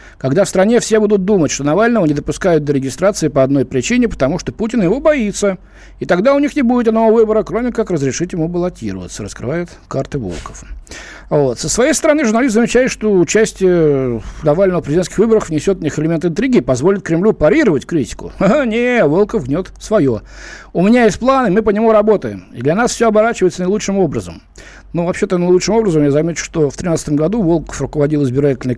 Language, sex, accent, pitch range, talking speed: Russian, male, native, 145-210 Hz, 190 wpm